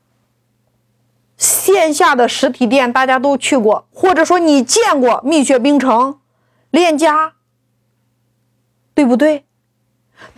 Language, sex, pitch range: Chinese, female, 225-340 Hz